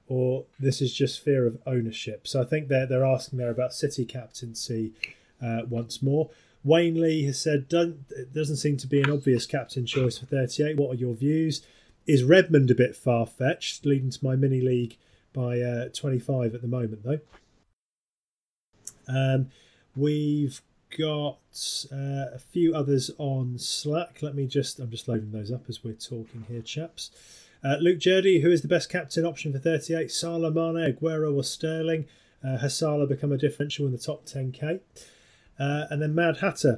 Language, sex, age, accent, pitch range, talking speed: English, male, 30-49, British, 125-155 Hz, 180 wpm